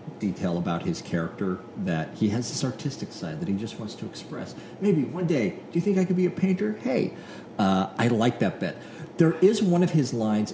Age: 40-59